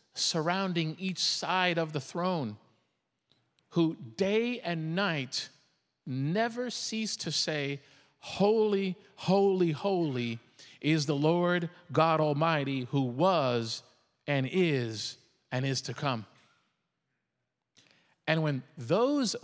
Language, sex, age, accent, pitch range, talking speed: English, male, 50-69, American, 135-185 Hz, 100 wpm